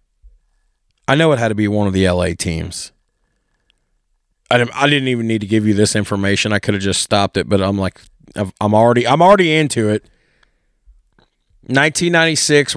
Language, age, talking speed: English, 30-49, 185 wpm